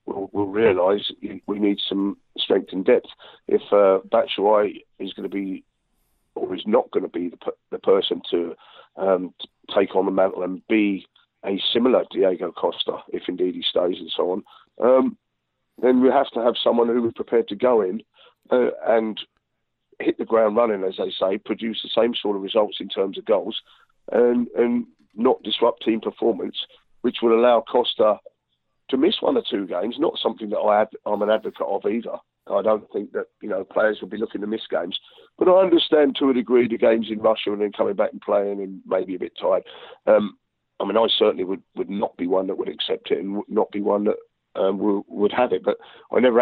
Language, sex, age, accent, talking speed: English, male, 40-59, British, 215 wpm